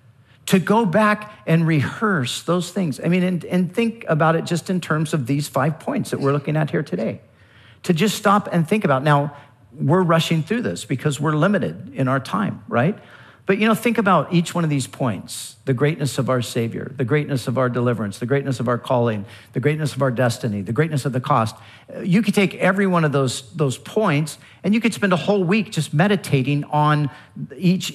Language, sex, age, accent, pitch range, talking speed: English, male, 50-69, American, 125-185 Hz, 215 wpm